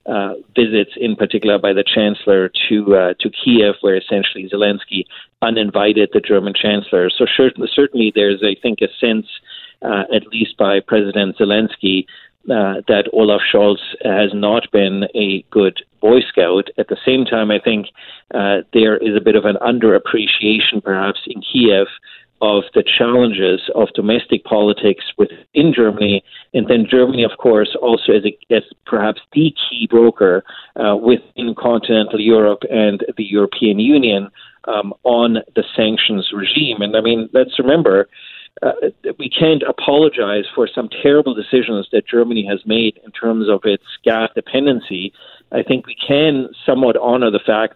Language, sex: English, male